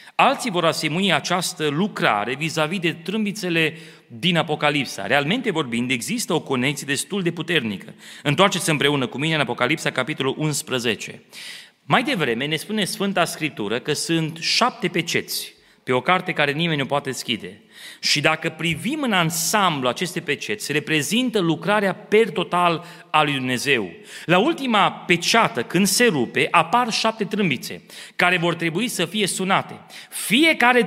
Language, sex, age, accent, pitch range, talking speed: Romanian, male, 30-49, native, 145-205 Hz, 145 wpm